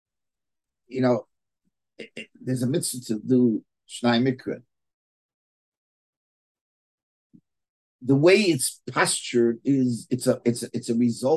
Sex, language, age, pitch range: male, English, 50-69, 125-185 Hz